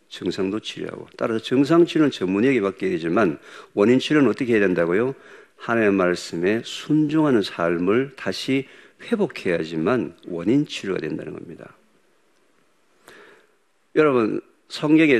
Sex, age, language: male, 50-69, Korean